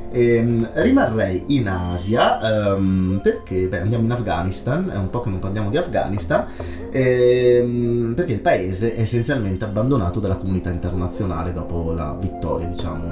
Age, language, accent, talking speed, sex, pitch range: 30-49, Italian, native, 150 wpm, male, 85-100 Hz